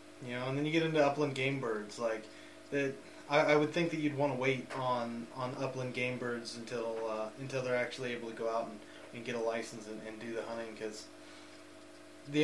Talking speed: 225 wpm